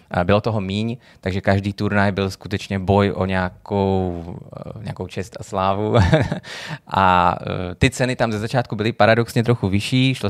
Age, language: 20-39, Czech